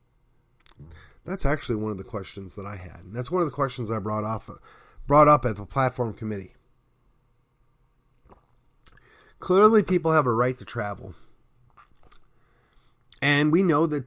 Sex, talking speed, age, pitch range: male, 145 wpm, 30-49, 100-130 Hz